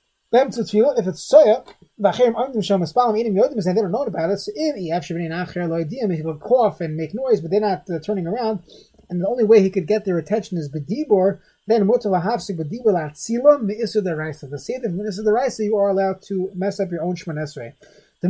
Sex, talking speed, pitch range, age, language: male, 215 wpm, 175-220 Hz, 30-49, English